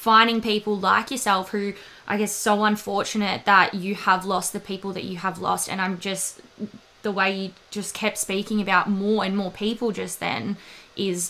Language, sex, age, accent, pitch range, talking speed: English, female, 20-39, Australian, 185-210 Hz, 190 wpm